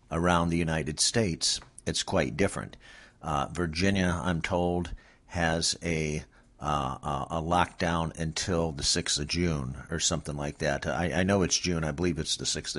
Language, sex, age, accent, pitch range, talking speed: English, male, 50-69, American, 80-95 Hz, 165 wpm